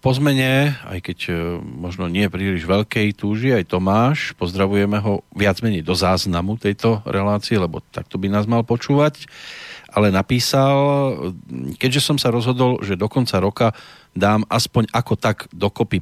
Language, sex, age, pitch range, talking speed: Slovak, male, 40-59, 95-125 Hz, 150 wpm